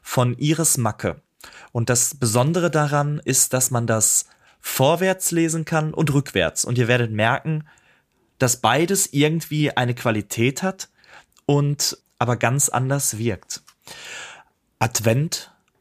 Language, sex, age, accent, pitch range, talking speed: German, male, 30-49, German, 120-155 Hz, 120 wpm